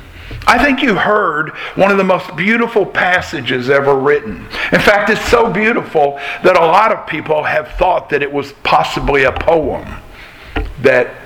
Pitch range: 130-185 Hz